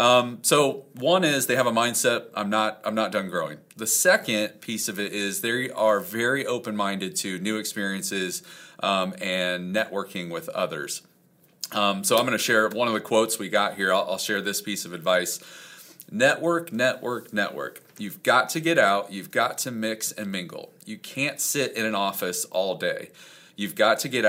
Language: English